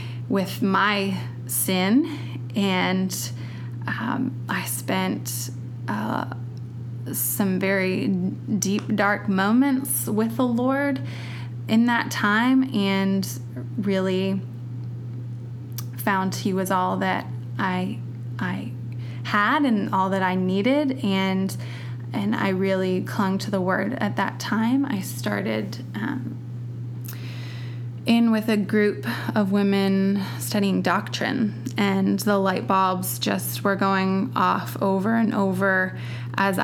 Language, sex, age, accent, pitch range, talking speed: English, female, 20-39, American, 120-195 Hz, 110 wpm